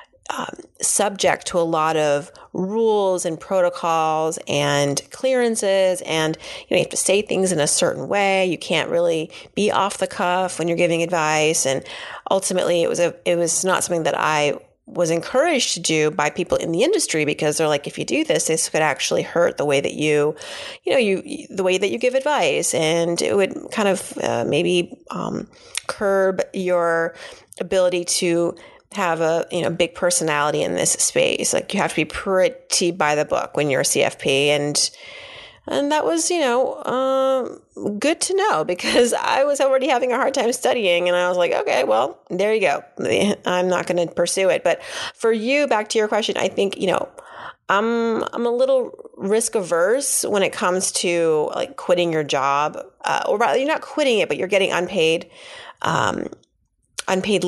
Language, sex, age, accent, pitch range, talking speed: English, female, 30-49, American, 165-250 Hz, 190 wpm